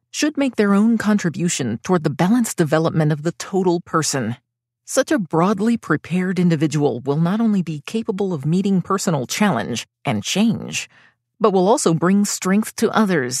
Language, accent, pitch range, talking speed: English, American, 155-210 Hz, 160 wpm